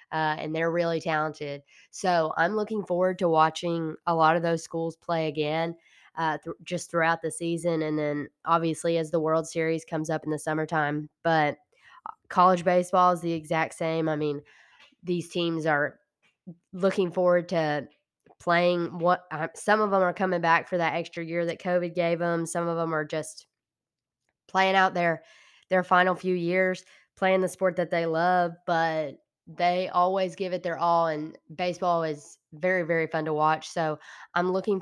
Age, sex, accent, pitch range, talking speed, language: 10-29, female, American, 155-175 Hz, 180 wpm, English